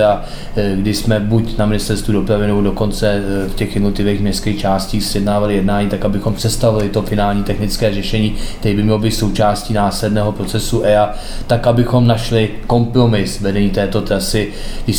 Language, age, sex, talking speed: Czech, 20-39, male, 150 wpm